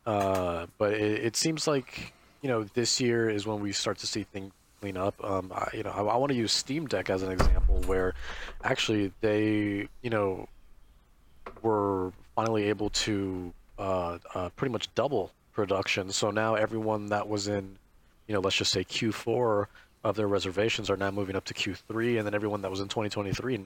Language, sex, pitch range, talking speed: English, male, 95-110 Hz, 200 wpm